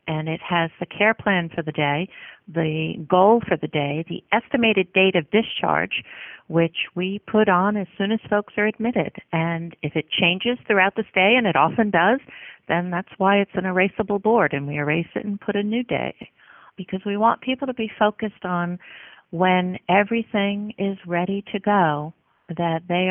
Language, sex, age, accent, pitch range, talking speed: English, female, 50-69, American, 175-205 Hz, 185 wpm